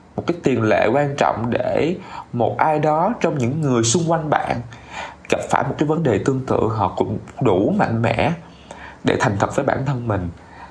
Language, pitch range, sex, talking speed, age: Vietnamese, 100-145 Hz, male, 200 wpm, 20-39